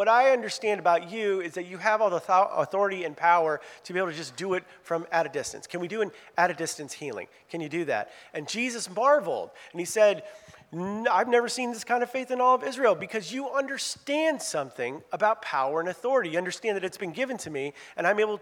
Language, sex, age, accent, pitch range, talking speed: English, male, 40-59, American, 170-245 Hz, 230 wpm